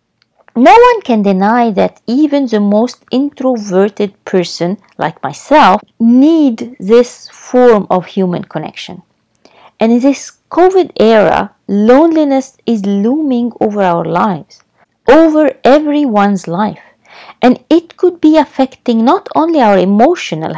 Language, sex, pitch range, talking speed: English, female, 190-260 Hz, 120 wpm